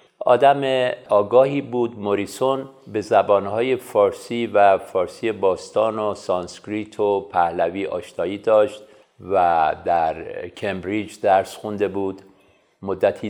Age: 50-69